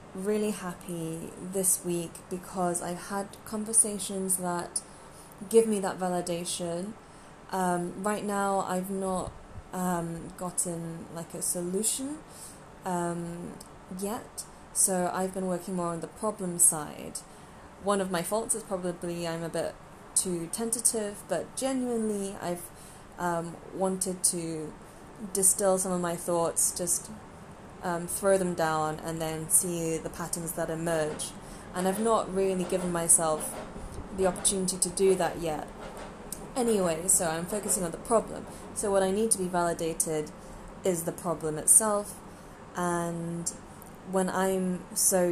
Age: 20-39